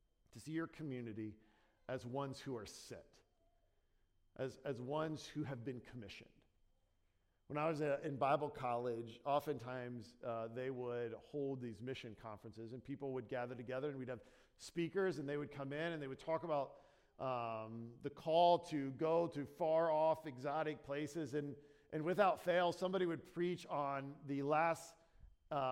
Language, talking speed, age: English, 165 wpm, 50-69